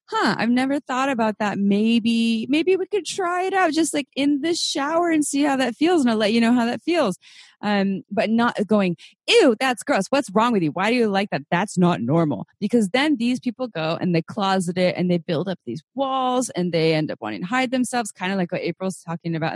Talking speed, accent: 245 wpm, American